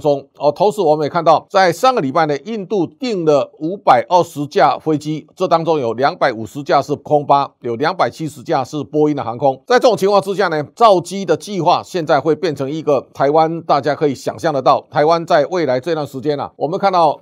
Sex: male